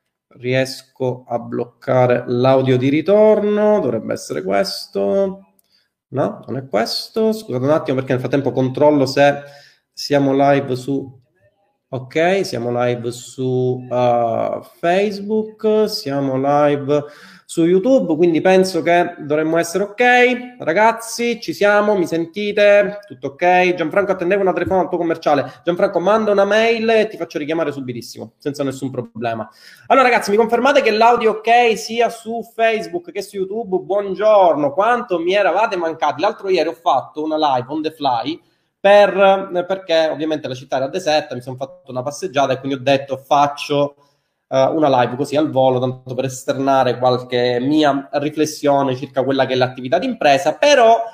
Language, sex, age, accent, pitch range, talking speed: Italian, male, 30-49, native, 140-205 Hz, 150 wpm